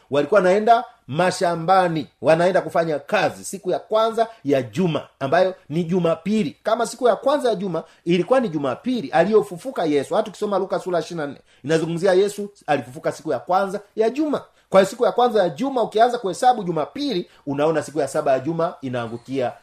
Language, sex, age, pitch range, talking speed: Swahili, male, 40-59, 150-225 Hz, 165 wpm